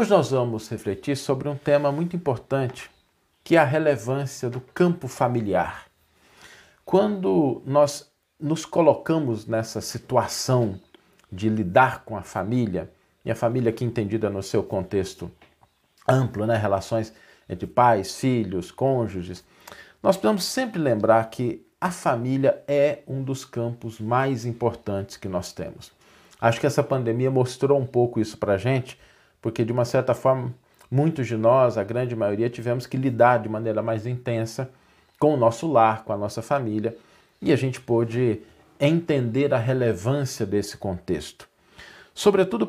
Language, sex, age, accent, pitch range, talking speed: Portuguese, male, 50-69, Brazilian, 110-140 Hz, 150 wpm